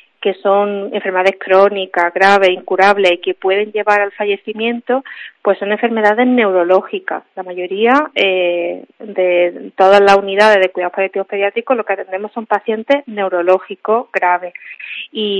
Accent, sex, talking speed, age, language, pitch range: Spanish, female, 135 wpm, 30-49, Spanish, 190-225 Hz